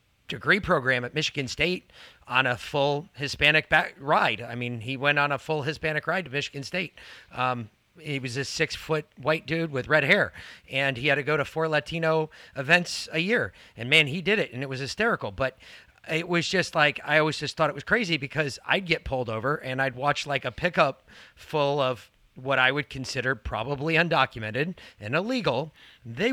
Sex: male